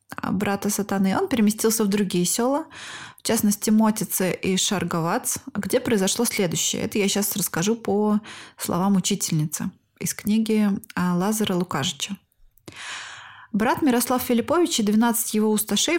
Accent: native